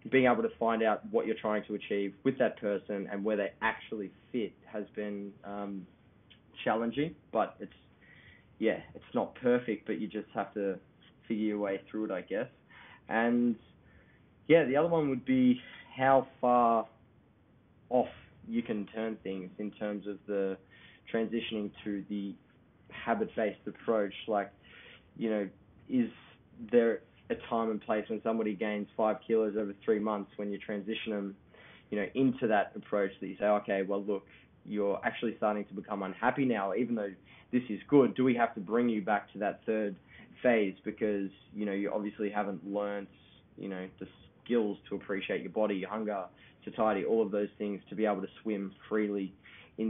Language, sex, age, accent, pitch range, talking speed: English, male, 20-39, Australian, 100-115 Hz, 180 wpm